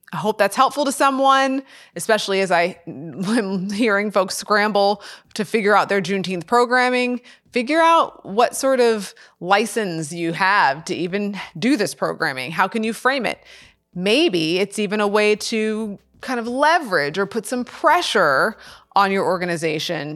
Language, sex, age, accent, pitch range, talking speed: English, female, 20-39, American, 180-235 Hz, 155 wpm